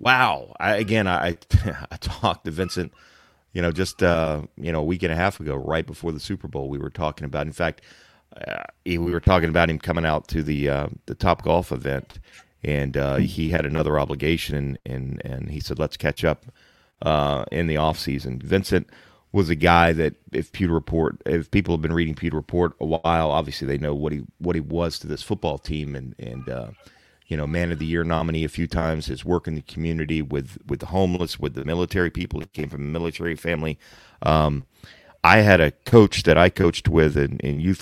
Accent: American